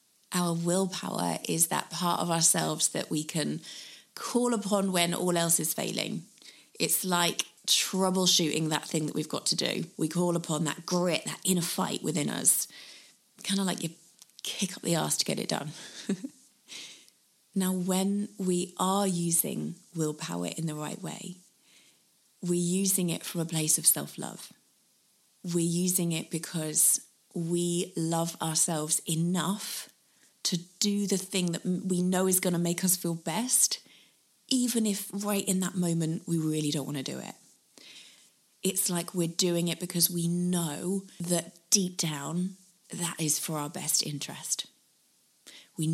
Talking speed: 155 wpm